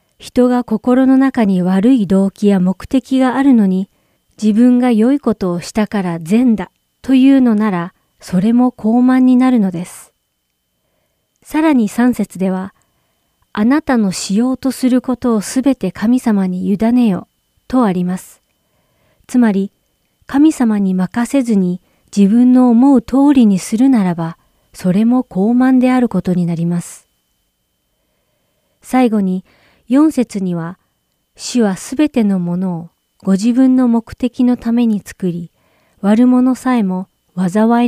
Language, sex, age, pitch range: Japanese, female, 40-59, 185-250 Hz